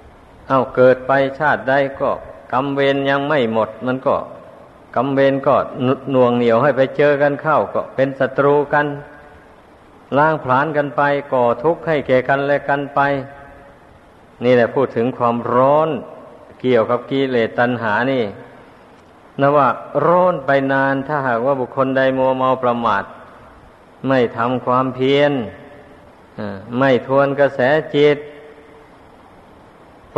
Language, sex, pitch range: Thai, male, 125-145 Hz